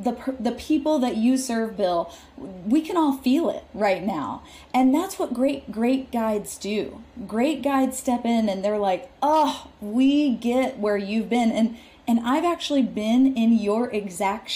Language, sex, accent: English, female, American